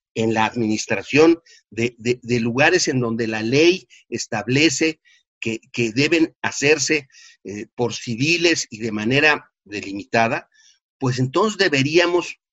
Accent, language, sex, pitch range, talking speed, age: Mexican, Spanish, male, 125-180 Hz, 125 wpm, 50-69